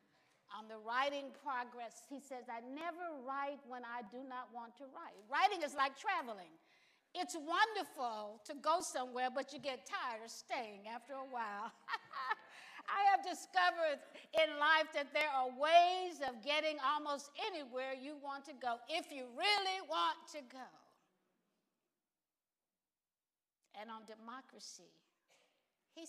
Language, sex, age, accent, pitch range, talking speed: English, female, 50-69, American, 240-300 Hz, 140 wpm